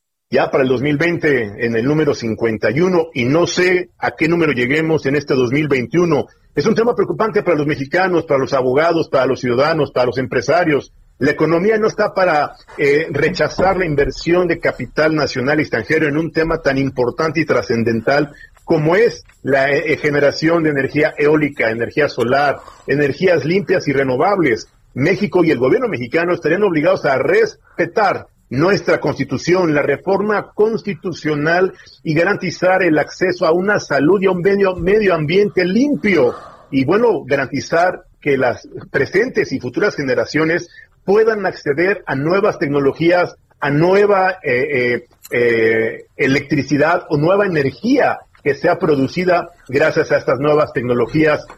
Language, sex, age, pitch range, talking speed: Spanish, male, 50-69, 140-190 Hz, 150 wpm